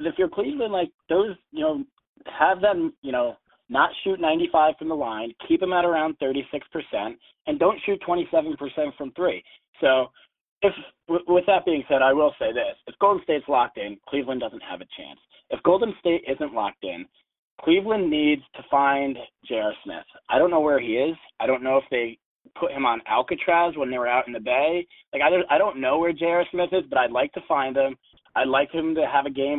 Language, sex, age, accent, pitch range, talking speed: English, male, 30-49, American, 130-175 Hz, 210 wpm